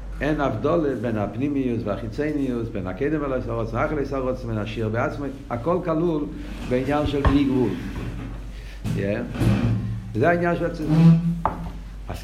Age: 50-69